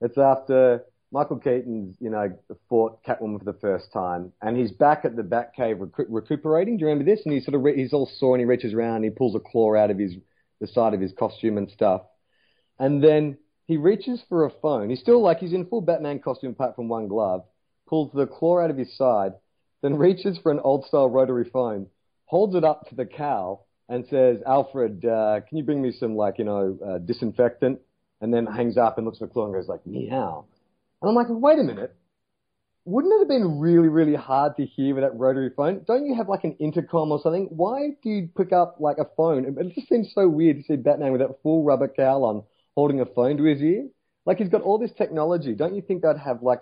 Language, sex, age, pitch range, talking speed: English, male, 40-59, 115-160 Hz, 240 wpm